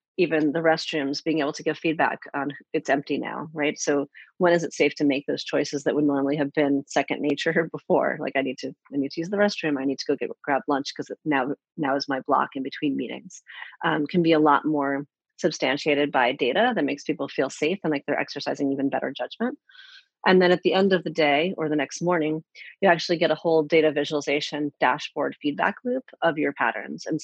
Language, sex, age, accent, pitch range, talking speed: English, female, 30-49, American, 145-170 Hz, 225 wpm